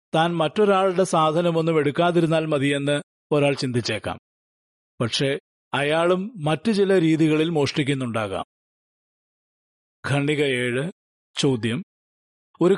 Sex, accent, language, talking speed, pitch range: male, native, Malayalam, 80 wpm, 140-175 Hz